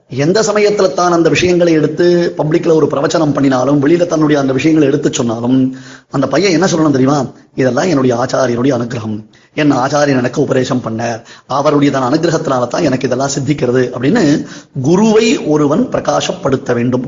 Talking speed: 150 wpm